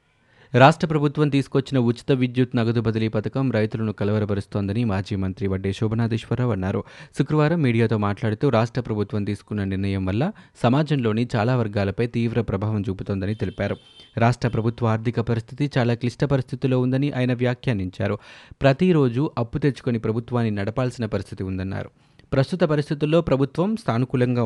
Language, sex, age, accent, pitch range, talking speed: Telugu, male, 30-49, native, 110-135 Hz, 125 wpm